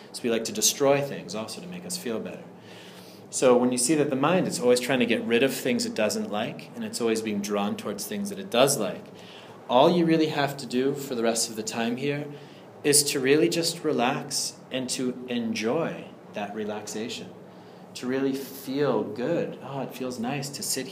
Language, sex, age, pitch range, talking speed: English, male, 30-49, 115-190 Hz, 210 wpm